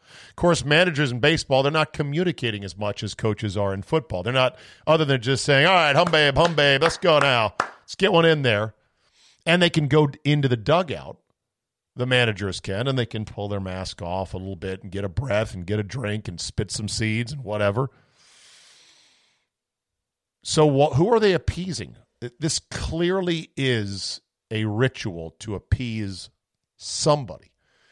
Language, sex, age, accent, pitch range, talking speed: English, male, 50-69, American, 105-140 Hz, 180 wpm